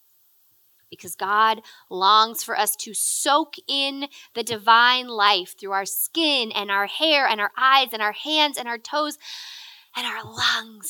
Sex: female